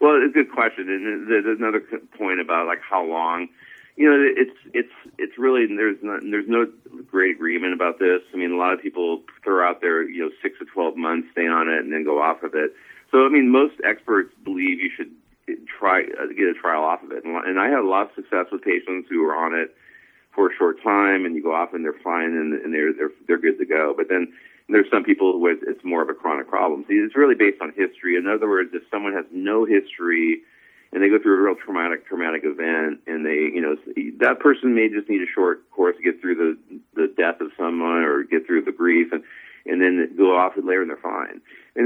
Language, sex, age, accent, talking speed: English, male, 40-59, American, 250 wpm